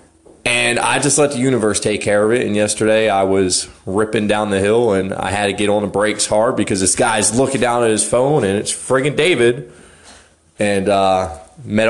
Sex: male